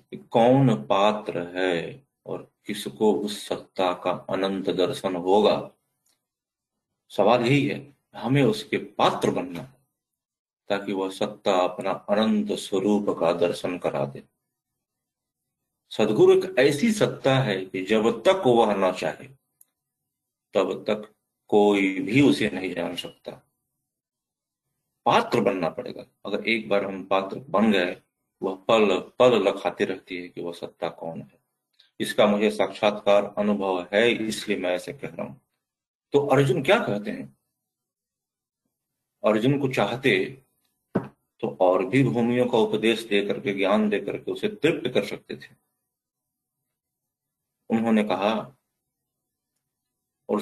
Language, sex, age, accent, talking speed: Hindi, male, 50-69, native, 125 wpm